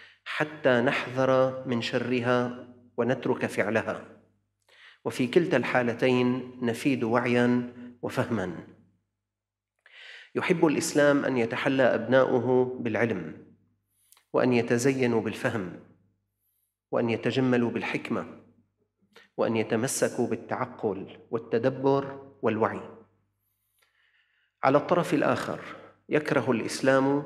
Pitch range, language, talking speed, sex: 105-130 Hz, Arabic, 75 wpm, male